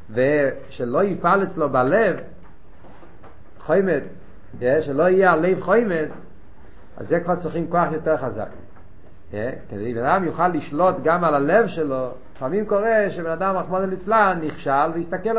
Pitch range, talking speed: 130-185 Hz, 135 wpm